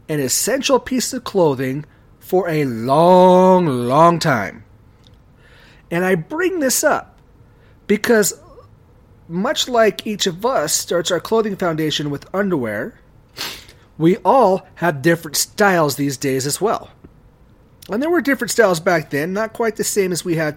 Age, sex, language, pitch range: 30-49, male, English, 140-195 Hz